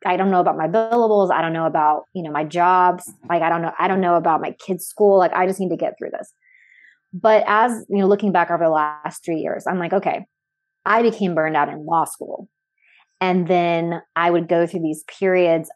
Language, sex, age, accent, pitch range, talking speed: English, female, 20-39, American, 165-200 Hz, 235 wpm